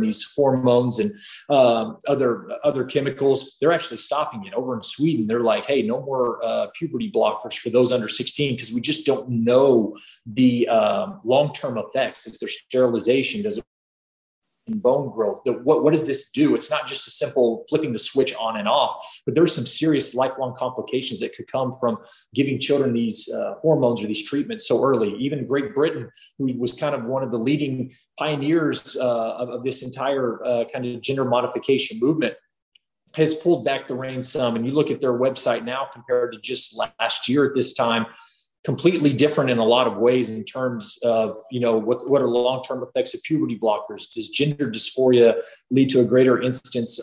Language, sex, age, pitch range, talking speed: English, male, 30-49, 120-150 Hz, 190 wpm